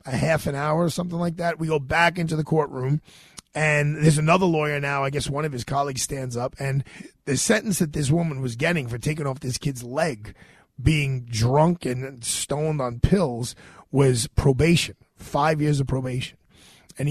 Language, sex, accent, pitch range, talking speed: English, male, American, 125-155 Hz, 190 wpm